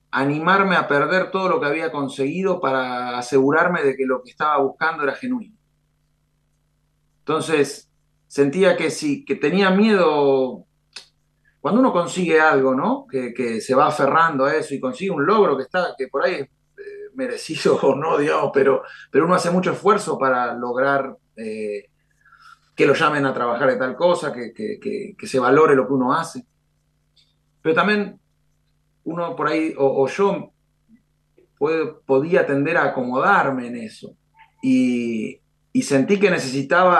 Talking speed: 160 wpm